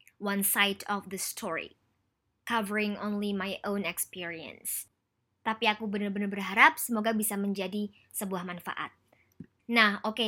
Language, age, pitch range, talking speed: Indonesian, 20-39, 200-235 Hz, 125 wpm